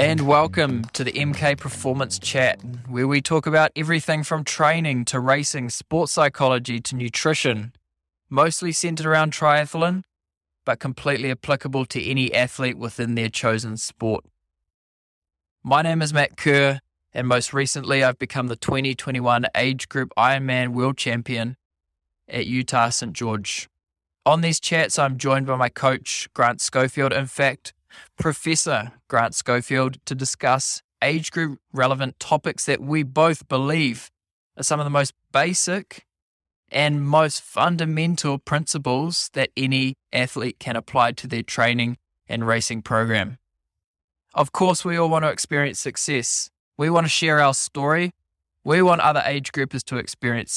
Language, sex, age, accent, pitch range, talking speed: English, male, 20-39, Australian, 120-150 Hz, 145 wpm